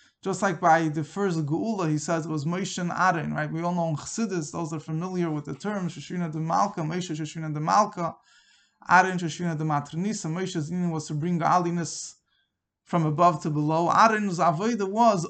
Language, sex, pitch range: English, male, 160-195 Hz